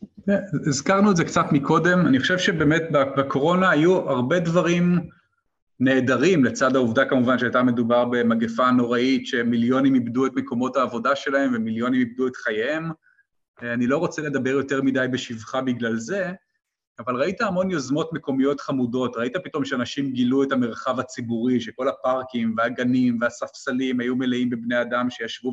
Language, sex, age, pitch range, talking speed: Hebrew, male, 30-49, 125-175 Hz, 145 wpm